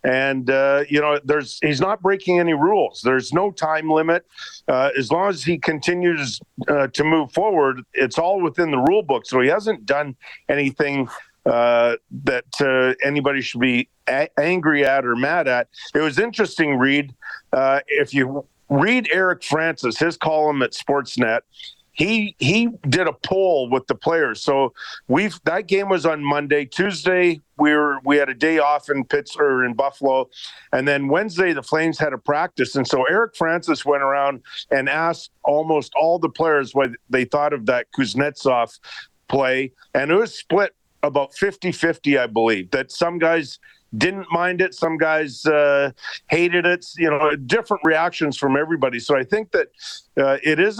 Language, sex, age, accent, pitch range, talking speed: English, male, 50-69, American, 135-170 Hz, 175 wpm